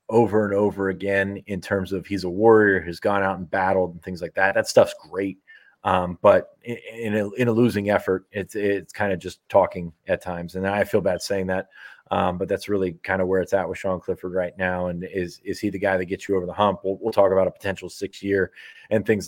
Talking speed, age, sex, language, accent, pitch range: 255 wpm, 30-49, male, English, American, 90-100 Hz